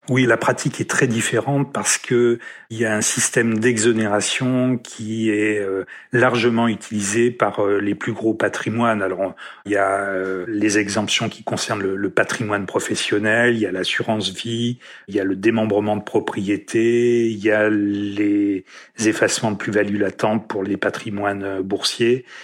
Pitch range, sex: 105-125 Hz, male